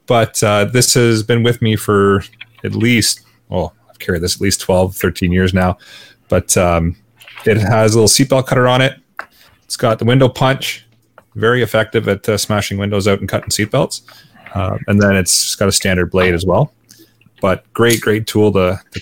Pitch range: 95-120 Hz